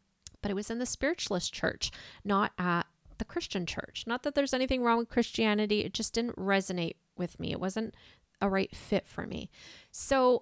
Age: 30-49